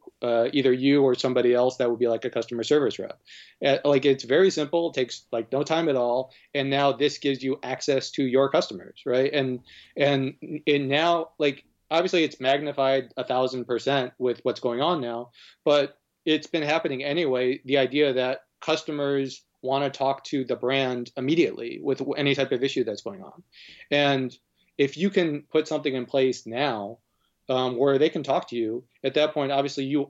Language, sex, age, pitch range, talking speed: English, male, 30-49, 125-145 Hz, 190 wpm